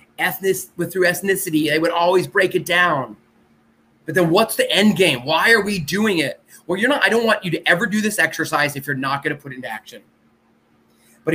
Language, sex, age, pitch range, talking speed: English, male, 30-49, 140-180 Hz, 220 wpm